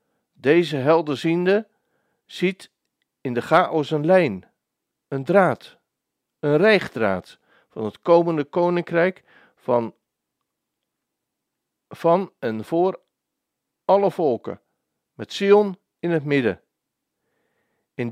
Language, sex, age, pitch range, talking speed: Dutch, male, 50-69, 135-175 Hz, 95 wpm